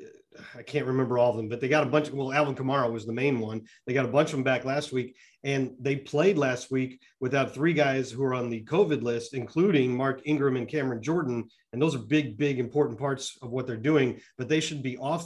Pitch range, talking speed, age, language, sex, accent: 120-145 Hz, 250 wpm, 40-59, English, male, American